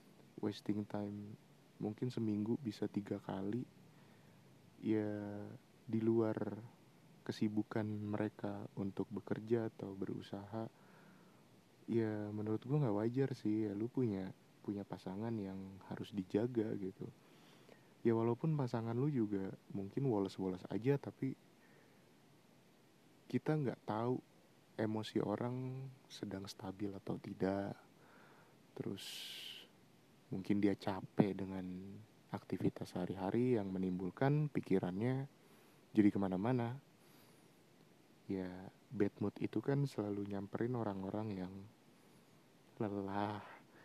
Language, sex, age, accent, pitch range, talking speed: Indonesian, male, 20-39, native, 100-120 Hz, 95 wpm